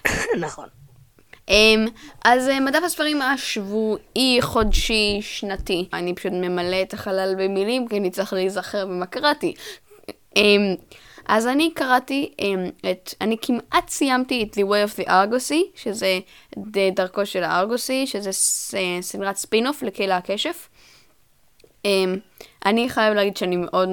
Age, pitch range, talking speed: 10-29, 190-240 Hz, 115 wpm